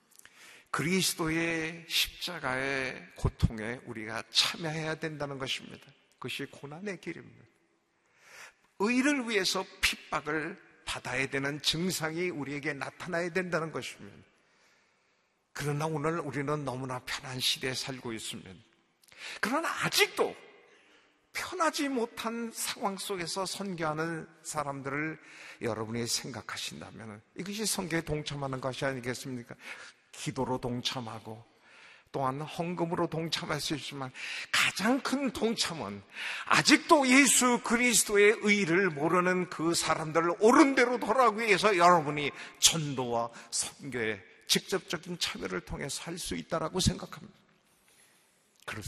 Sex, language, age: male, Korean, 50-69